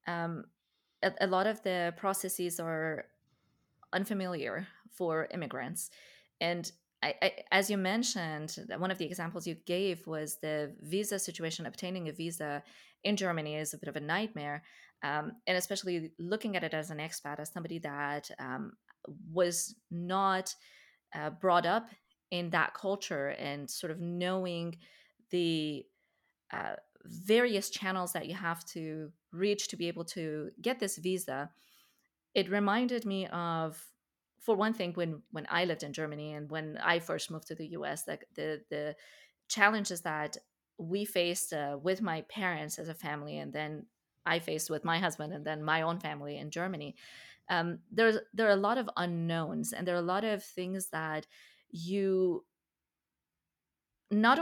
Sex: female